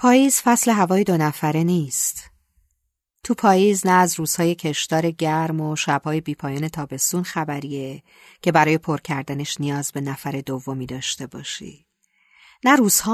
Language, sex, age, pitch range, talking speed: Persian, female, 40-59, 135-170 Hz, 135 wpm